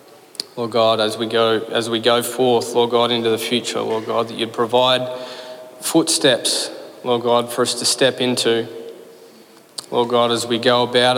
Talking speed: 175 wpm